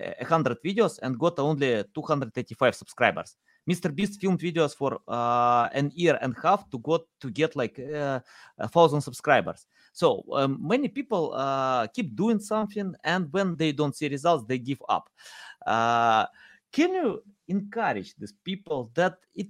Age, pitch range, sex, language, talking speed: 20-39, 125-185 Hz, male, English, 160 wpm